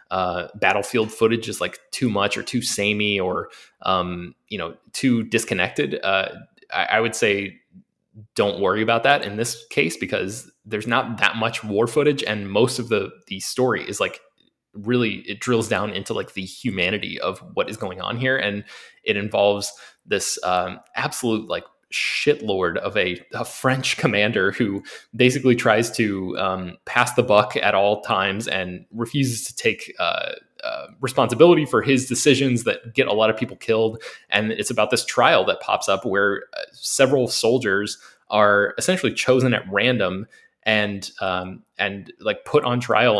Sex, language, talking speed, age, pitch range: male, English, 170 wpm, 20-39, 100-125 Hz